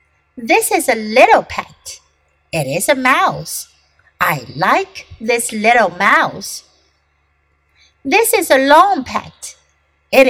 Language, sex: Chinese, female